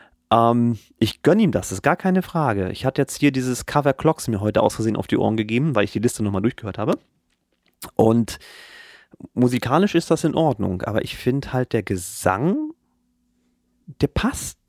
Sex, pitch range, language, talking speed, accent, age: male, 110-150 Hz, German, 175 wpm, German, 30-49